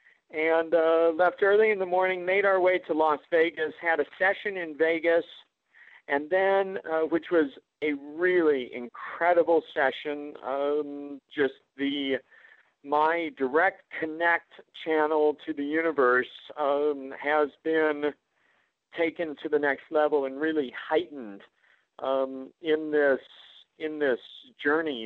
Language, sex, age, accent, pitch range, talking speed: English, male, 50-69, American, 145-170 Hz, 130 wpm